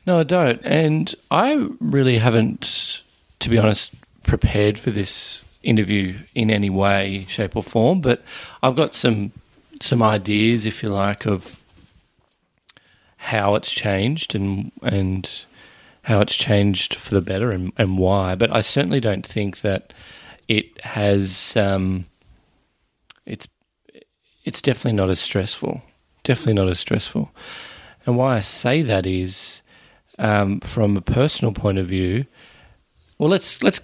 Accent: Australian